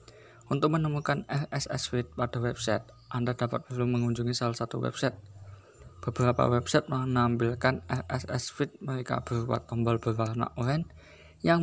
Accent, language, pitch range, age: native, Indonesian, 115-135 Hz, 20-39